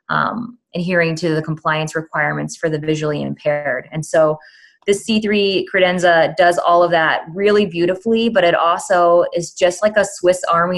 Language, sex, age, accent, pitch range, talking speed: English, female, 20-39, American, 160-185 Hz, 165 wpm